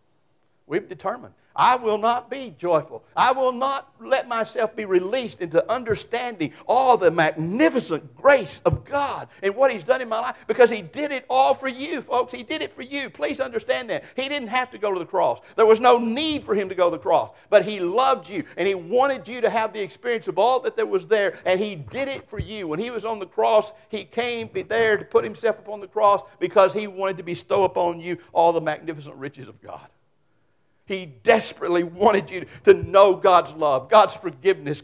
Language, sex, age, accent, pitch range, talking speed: English, male, 60-79, American, 170-230 Hz, 215 wpm